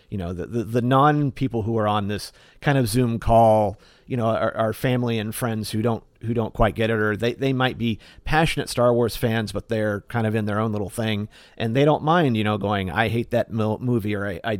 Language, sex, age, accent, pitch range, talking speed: English, male, 40-59, American, 105-120 Hz, 245 wpm